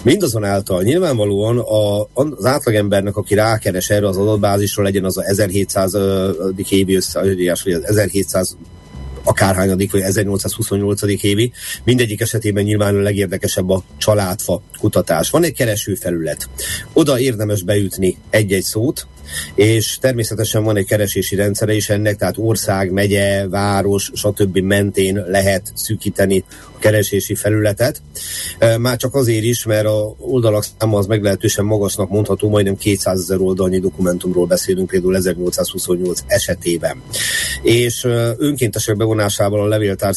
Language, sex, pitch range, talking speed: Hungarian, male, 95-110 Hz, 125 wpm